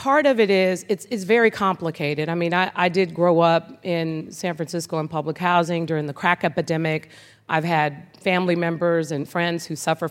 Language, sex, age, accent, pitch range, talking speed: English, female, 40-59, American, 160-190 Hz, 195 wpm